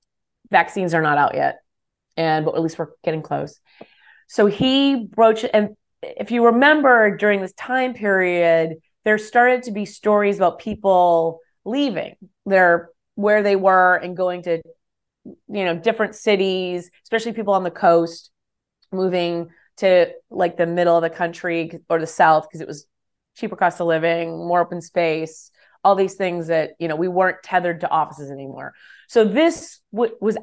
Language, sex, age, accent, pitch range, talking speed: English, female, 30-49, American, 165-210 Hz, 165 wpm